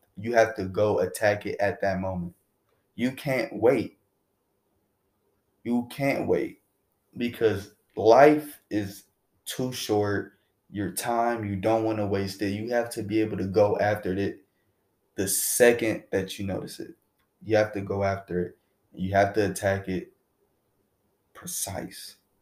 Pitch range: 100-120 Hz